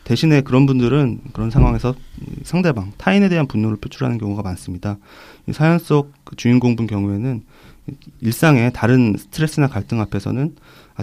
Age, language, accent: 30-49, Korean, native